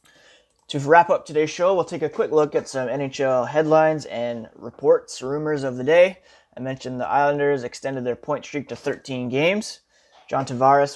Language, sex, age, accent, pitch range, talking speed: English, male, 20-39, American, 125-150 Hz, 180 wpm